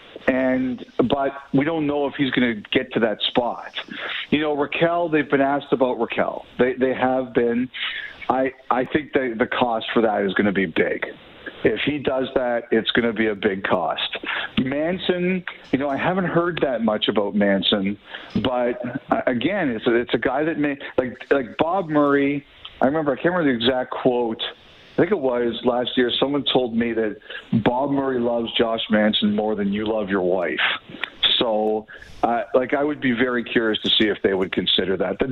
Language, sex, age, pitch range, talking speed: English, male, 50-69, 110-135 Hz, 200 wpm